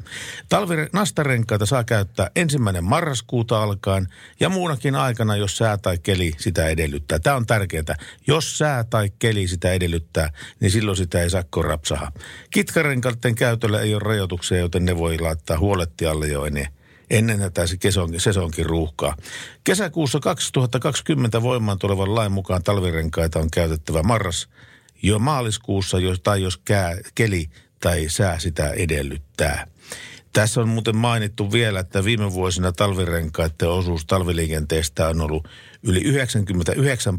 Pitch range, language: 85-120 Hz, Finnish